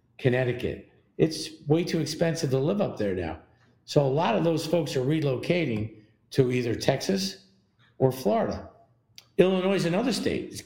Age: 50-69